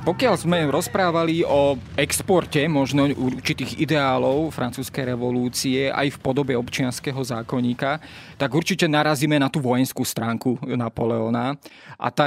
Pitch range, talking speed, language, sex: 130-160 Hz, 120 wpm, Slovak, male